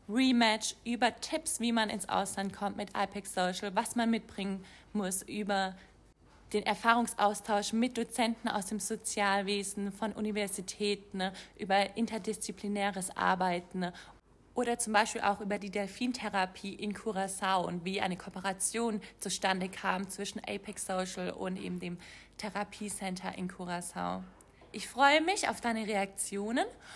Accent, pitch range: German, 190-235 Hz